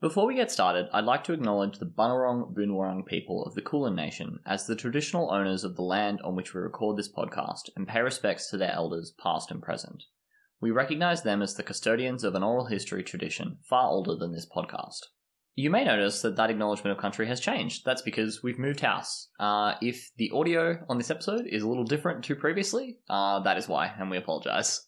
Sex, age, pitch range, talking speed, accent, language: male, 20-39, 100-135 Hz, 215 wpm, Australian, English